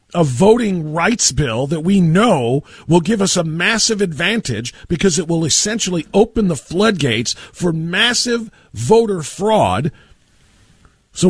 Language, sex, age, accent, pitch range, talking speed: English, male, 50-69, American, 150-235 Hz, 135 wpm